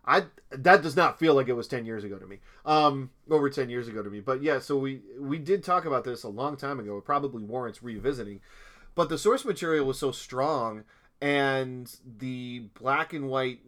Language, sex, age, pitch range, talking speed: English, male, 30-49, 115-140 Hz, 215 wpm